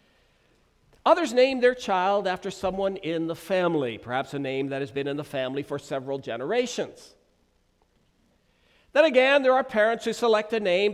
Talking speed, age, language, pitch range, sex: 165 wpm, 50-69, English, 155-250 Hz, male